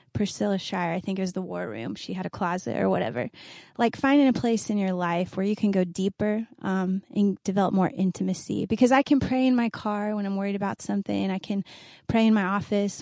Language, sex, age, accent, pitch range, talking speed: English, female, 20-39, American, 190-225 Hz, 230 wpm